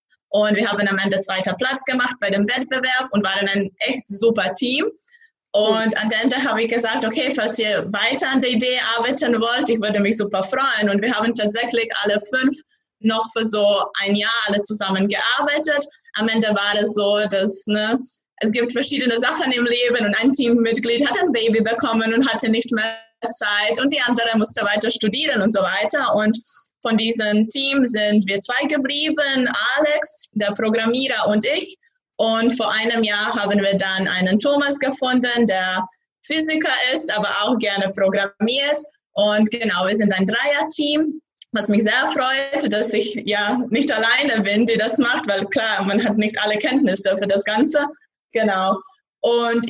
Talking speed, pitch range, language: 175 wpm, 210-265 Hz, German